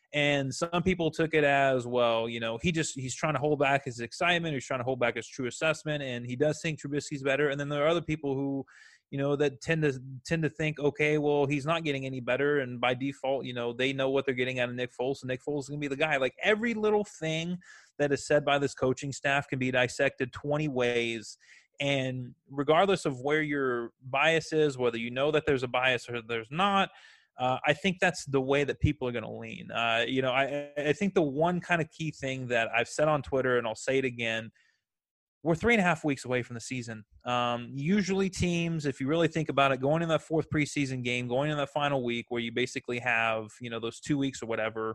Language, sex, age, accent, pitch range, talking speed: English, male, 20-39, American, 125-150 Hz, 250 wpm